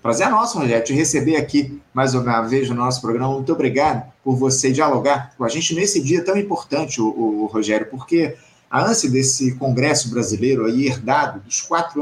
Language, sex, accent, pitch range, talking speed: Portuguese, male, Brazilian, 130-190 Hz, 175 wpm